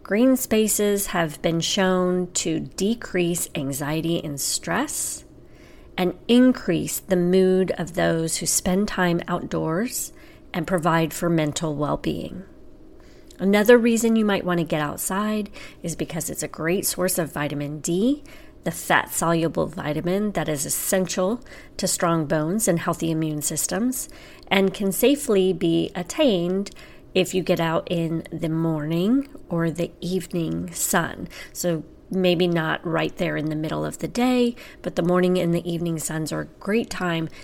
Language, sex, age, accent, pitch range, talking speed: English, female, 30-49, American, 165-195 Hz, 150 wpm